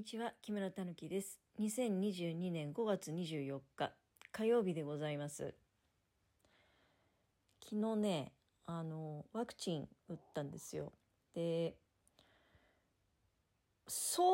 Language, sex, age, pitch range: Japanese, female, 40-59, 160-220 Hz